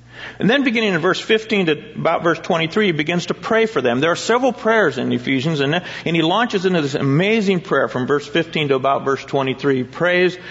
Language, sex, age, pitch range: English, male, 50-69, 130-195 Hz